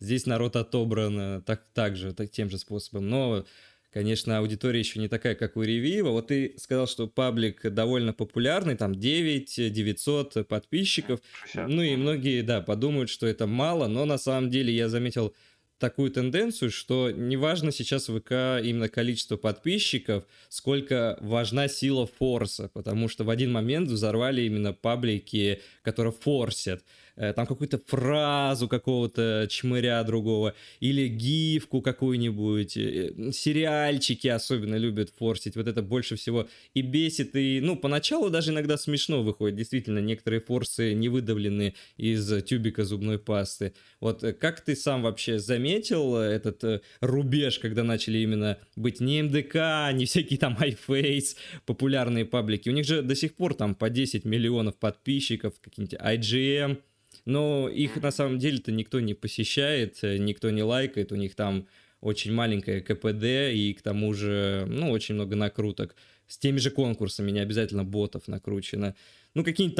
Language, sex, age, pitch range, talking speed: Russian, male, 20-39, 105-135 Hz, 145 wpm